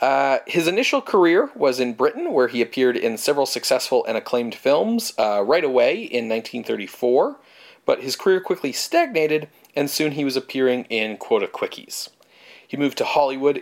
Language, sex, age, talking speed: English, male, 40-59, 170 wpm